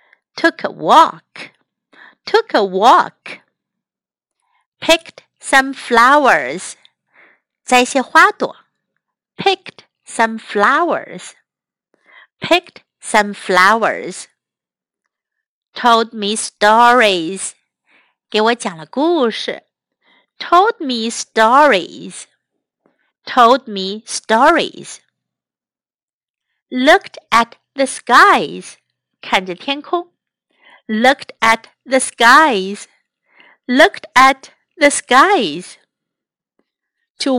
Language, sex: Chinese, female